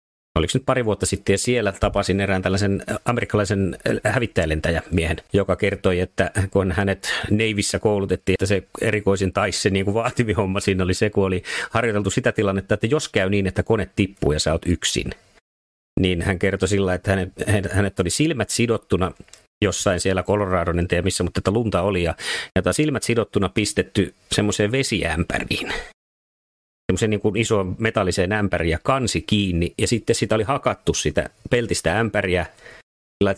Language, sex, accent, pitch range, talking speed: Finnish, male, native, 90-110 Hz, 160 wpm